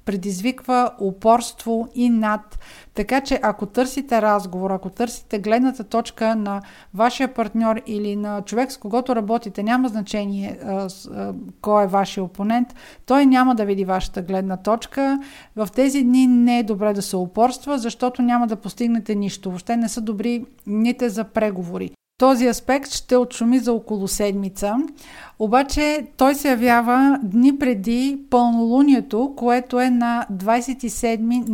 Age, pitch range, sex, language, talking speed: 50-69, 210-250 Hz, female, Bulgarian, 145 wpm